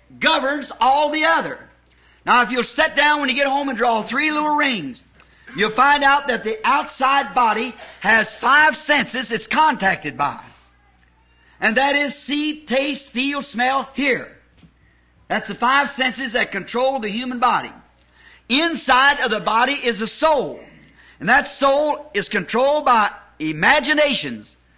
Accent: American